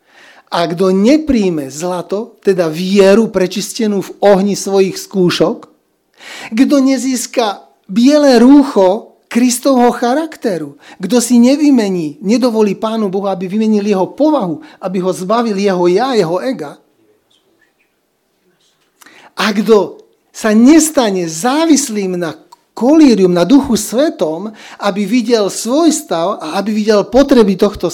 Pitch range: 185-250 Hz